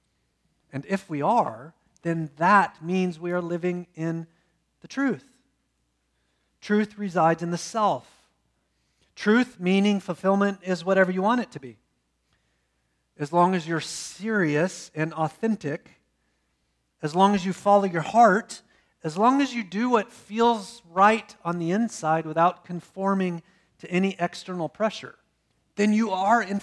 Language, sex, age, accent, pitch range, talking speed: English, male, 40-59, American, 140-205 Hz, 140 wpm